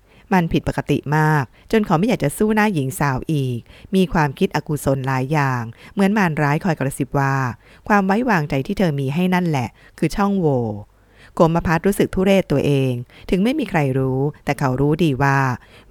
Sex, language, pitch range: female, Thai, 130-175 Hz